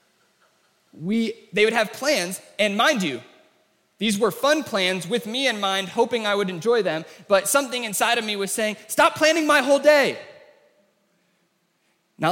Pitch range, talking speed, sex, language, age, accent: 160-215 Hz, 165 wpm, male, English, 20-39, American